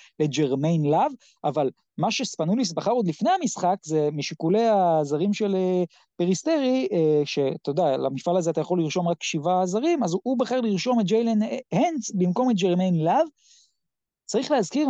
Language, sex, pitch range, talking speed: Hebrew, male, 155-220 Hz, 155 wpm